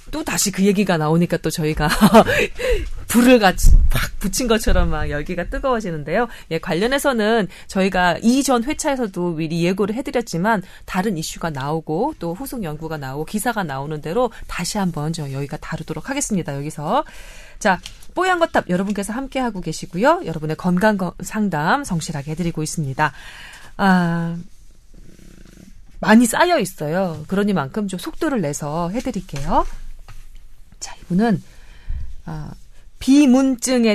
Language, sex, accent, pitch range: Korean, female, native, 165-245 Hz